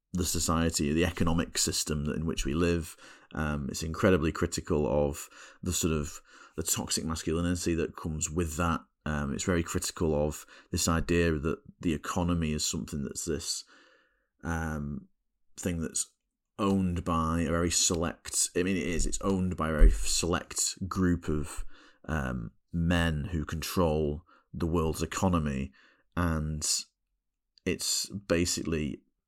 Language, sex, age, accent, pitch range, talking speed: English, male, 30-49, British, 75-90 Hz, 140 wpm